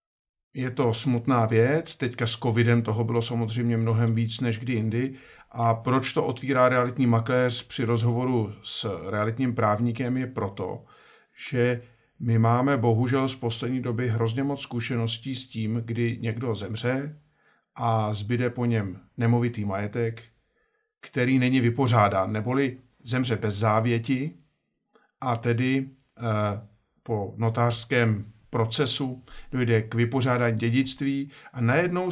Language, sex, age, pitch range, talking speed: Czech, male, 50-69, 115-135 Hz, 125 wpm